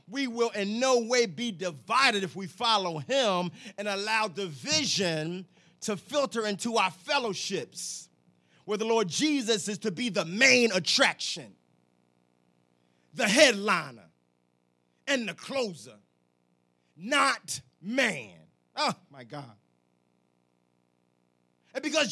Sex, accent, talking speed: male, American, 110 wpm